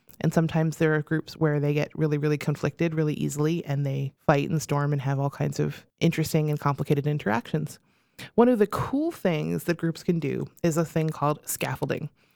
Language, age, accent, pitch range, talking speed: English, 20-39, American, 150-180 Hz, 200 wpm